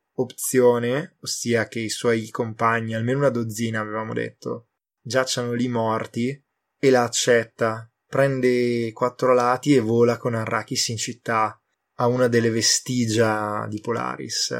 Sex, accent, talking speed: male, native, 130 wpm